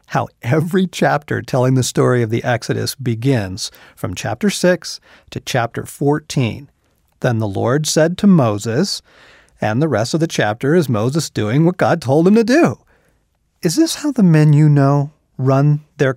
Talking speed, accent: 170 wpm, American